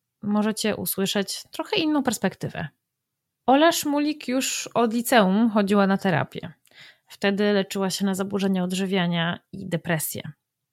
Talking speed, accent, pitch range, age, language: 115 wpm, native, 185-230 Hz, 20-39, Polish